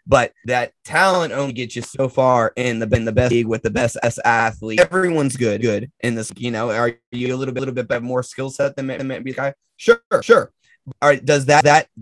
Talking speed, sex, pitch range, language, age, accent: 240 wpm, male, 125-155 Hz, English, 20-39, American